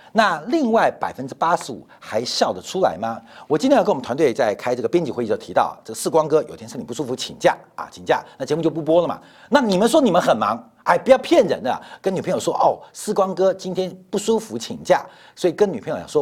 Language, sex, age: Chinese, male, 50-69